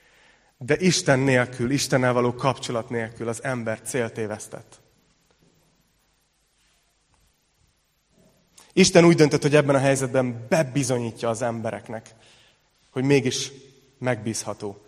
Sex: male